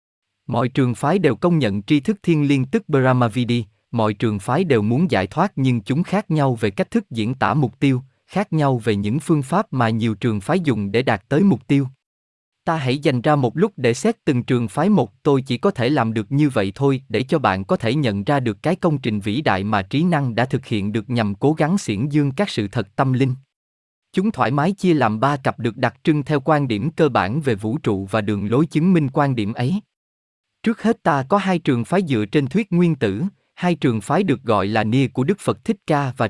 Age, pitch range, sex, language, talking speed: 20-39, 115-170 Hz, male, Vietnamese, 245 wpm